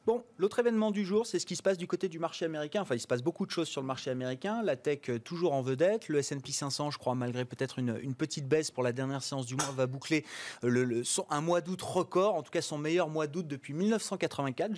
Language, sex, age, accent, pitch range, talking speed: French, male, 30-49, French, 135-190 Hz, 270 wpm